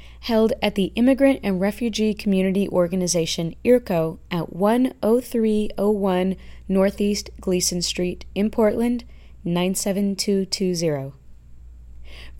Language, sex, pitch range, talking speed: English, female, 175-215 Hz, 80 wpm